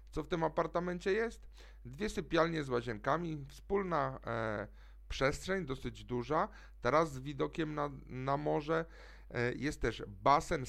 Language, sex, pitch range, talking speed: Polish, male, 125-175 Hz, 125 wpm